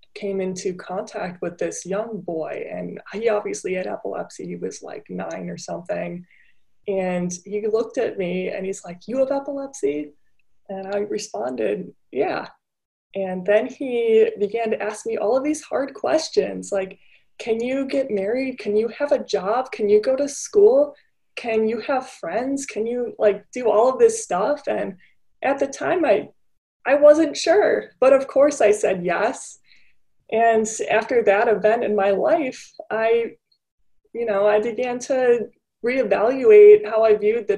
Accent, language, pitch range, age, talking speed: American, English, 200-275 Hz, 20-39, 165 wpm